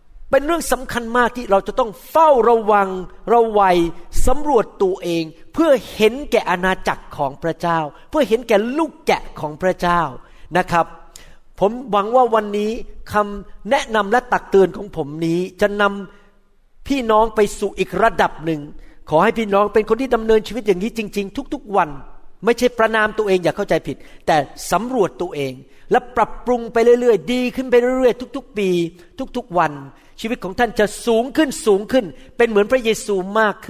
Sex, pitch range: male, 170-230 Hz